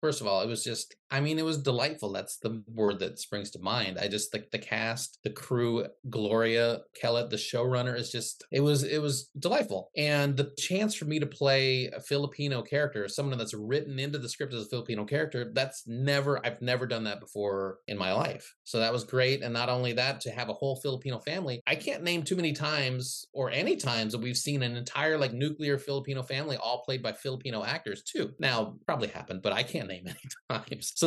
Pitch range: 115-150 Hz